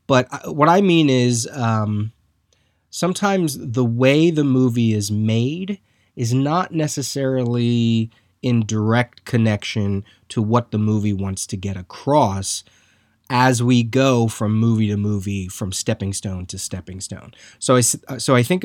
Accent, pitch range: American, 105-130 Hz